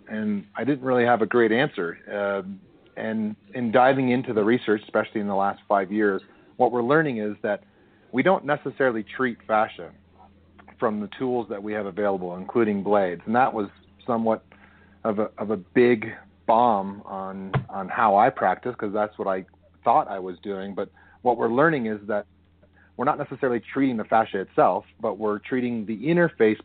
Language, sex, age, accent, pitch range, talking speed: English, male, 40-59, American, 100-125 Hz, 180 wpm